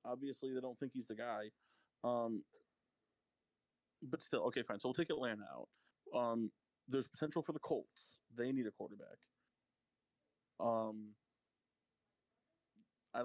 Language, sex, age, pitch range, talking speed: English, male, 20-39, 110-125 Hz, 130 wpm